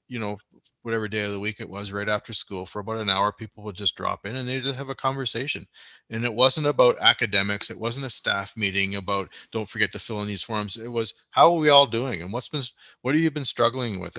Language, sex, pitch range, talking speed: English, male, 105-125 Hz, 260 wpm